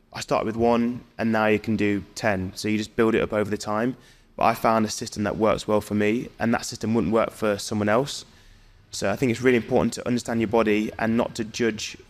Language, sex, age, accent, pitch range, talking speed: English, male, 20-39, British, 105-115 Hz, 255 wpm